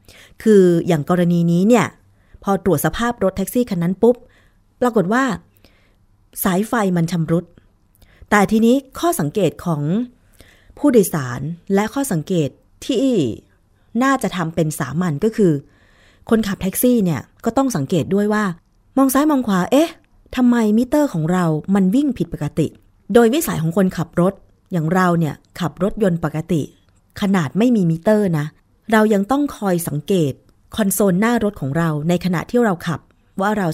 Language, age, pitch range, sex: Thai, 20-39, 160-220 Hz, female